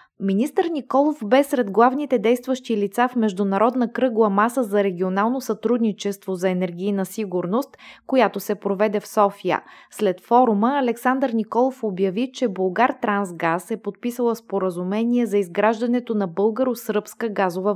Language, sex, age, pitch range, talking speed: Bulgarian, female, 20-39, 195-245 Hz, 130 wpm